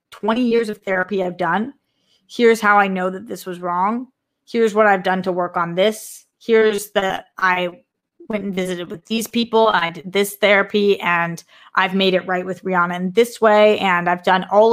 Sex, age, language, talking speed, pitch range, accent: female, 20-39, English, 200 wpm, 180-215 Hz, American